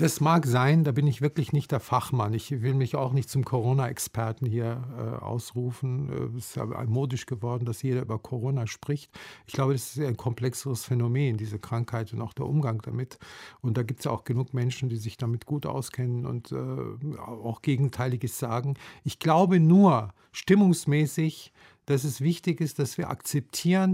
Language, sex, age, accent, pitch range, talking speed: German, male, 50-69, German, 120-155 Hz, 180 wpm